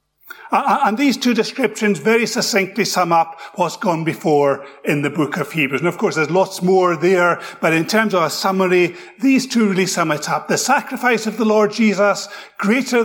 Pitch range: 165-230 Hz